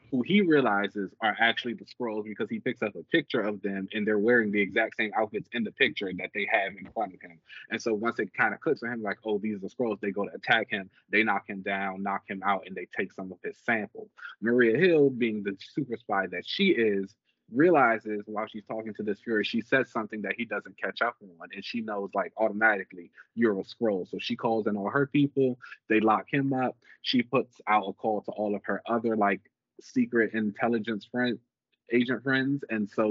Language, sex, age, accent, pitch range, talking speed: English, male, 20-39, American, 100-115 Hz, 230 wpm